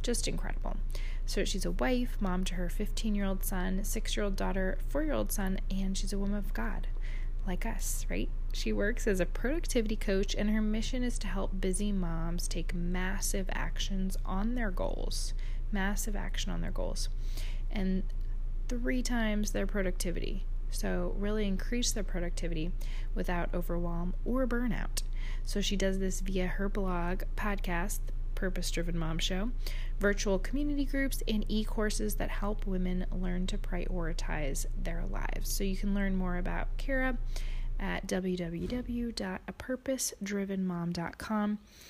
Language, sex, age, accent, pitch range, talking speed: English, female, 20-39, American, 180-215 Hz, 150 wpm